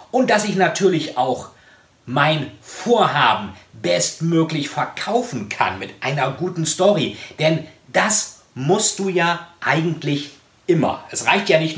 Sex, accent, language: male, German, German